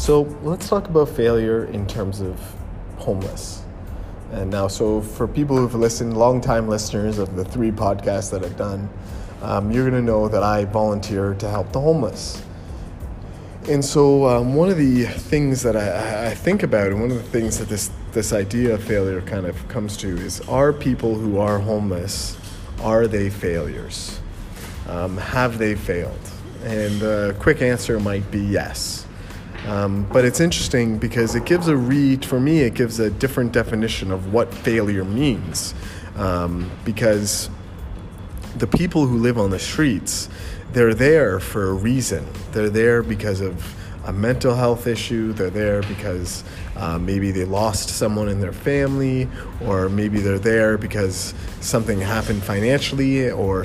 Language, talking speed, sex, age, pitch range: English, 165 wpm, male, 20-39, 95-120 Hz